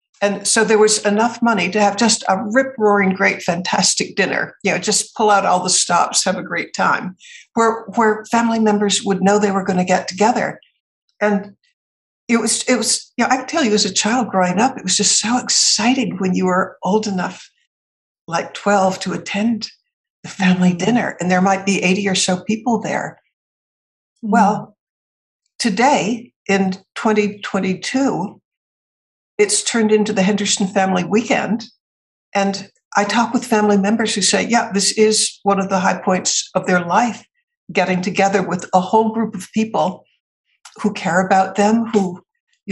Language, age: English, 60-79